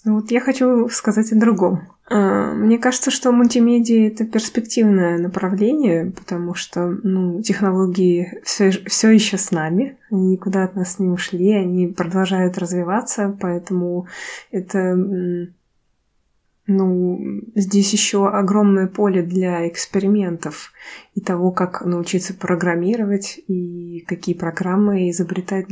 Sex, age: female, 20-39